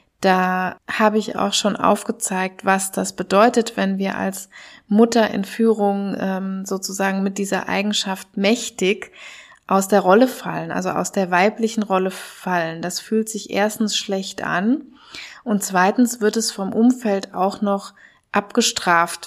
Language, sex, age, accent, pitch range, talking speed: German, female, 20-39, German, 180-215 Hz, 140 wpm